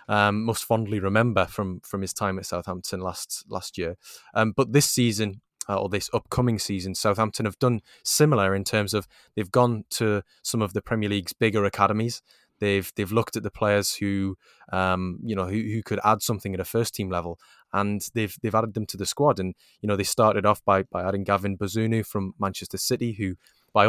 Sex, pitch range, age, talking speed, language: male, 95-110 Hz, 20-39, 205 wpm, English